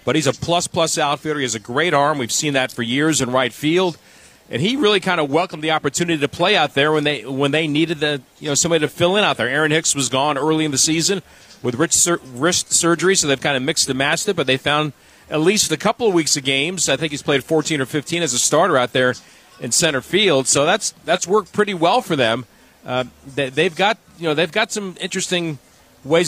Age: 40-59